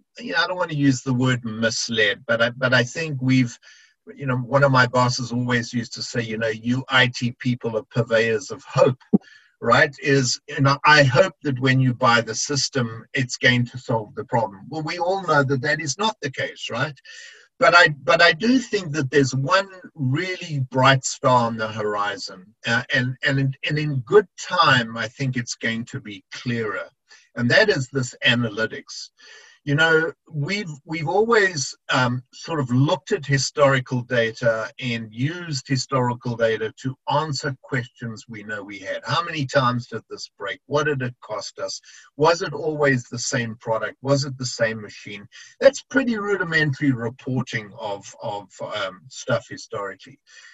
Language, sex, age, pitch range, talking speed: English, male, 50-69, 120-150 Hz, 180 wpm